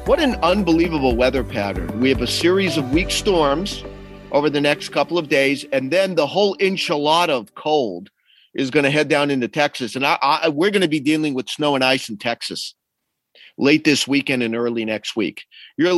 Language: English